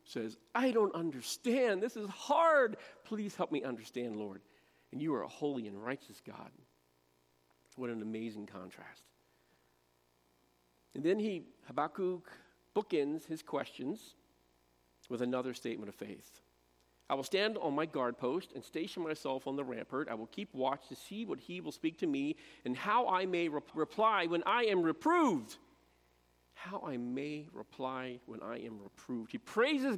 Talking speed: 160 wpm